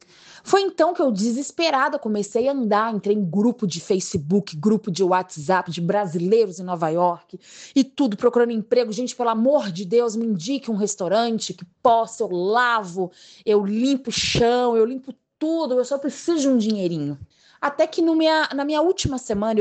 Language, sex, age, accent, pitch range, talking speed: Portuguese, female, 20-39, Brazilian, 185-245 Hz, 180 wpm